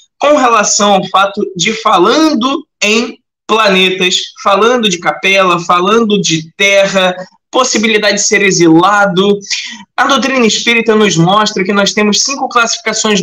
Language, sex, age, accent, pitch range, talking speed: Portuguese, male, 20-39, Brazilian, 185-230 Hz, 125 wpm